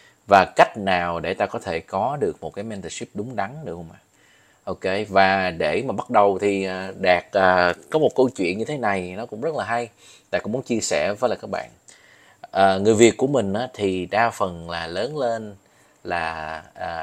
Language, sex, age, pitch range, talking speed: Vietnamese, male, 20-39, 90-115 Hz, 210 wpm